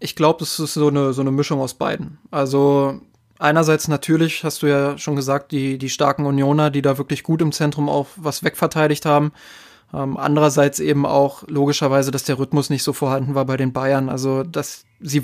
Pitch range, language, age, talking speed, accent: 140-155 Hz, German, 20-39, 195 wpm, German